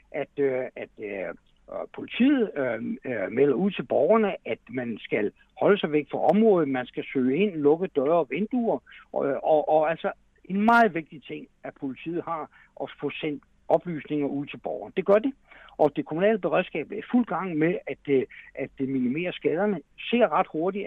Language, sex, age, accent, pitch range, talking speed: Danish, male, 60-79, native, 150-205 Hz, 175 wpm